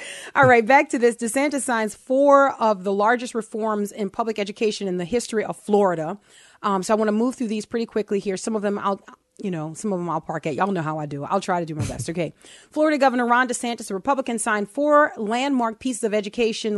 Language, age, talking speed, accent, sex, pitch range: English, 30-49, 240 wpm, American, female, 200-240 Hz